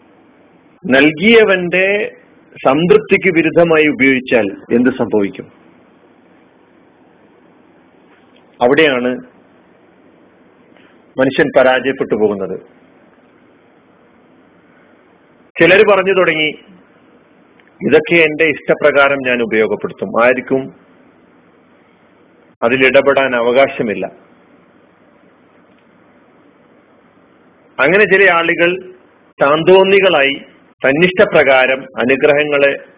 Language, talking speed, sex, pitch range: Malayalam, 50 wpm, male, 130-180 Hz